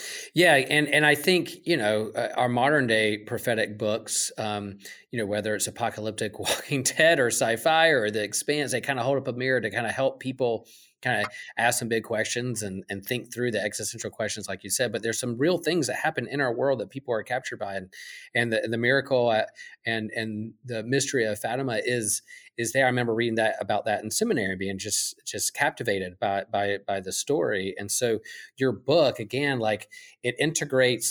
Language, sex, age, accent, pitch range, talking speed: English, male, 40-59, American, 110-145 Hz, 210 wpm